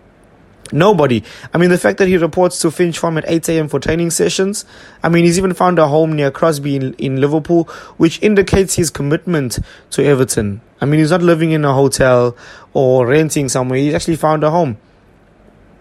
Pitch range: 140-180 Hz